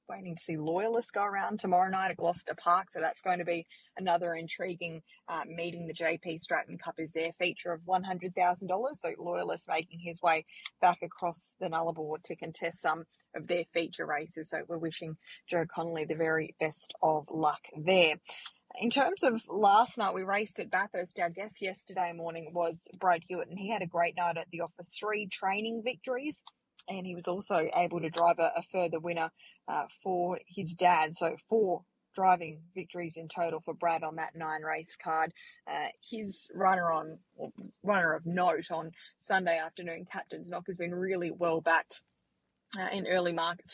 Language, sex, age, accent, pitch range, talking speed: English, female, 20-39, Australian, 165-185 Hz, 180 wpm